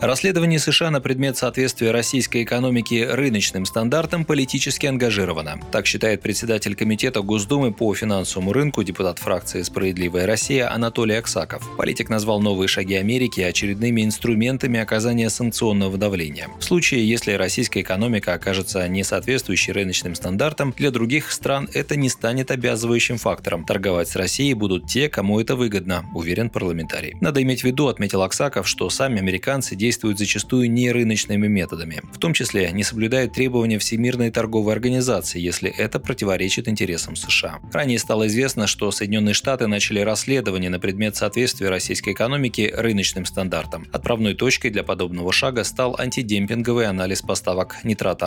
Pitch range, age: 95-125 Hz, 30-49